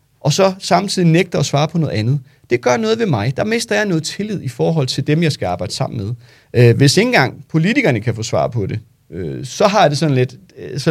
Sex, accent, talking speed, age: male, native, 240 wpm, 30-49